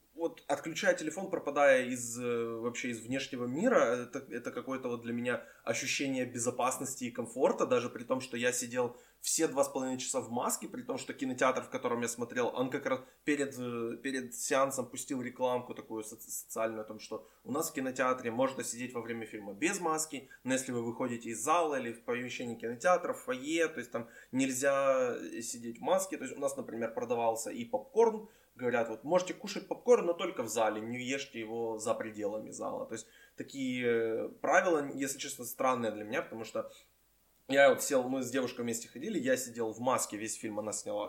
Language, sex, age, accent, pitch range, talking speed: Ukrainian, male, 20-39, native, 115-150 Hz, 195 wpm